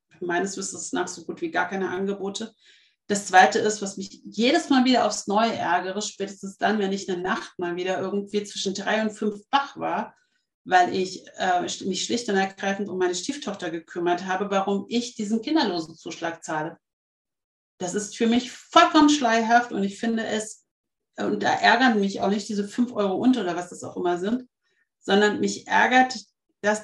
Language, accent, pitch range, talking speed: German, German, 190-245 Hz, 185 wpm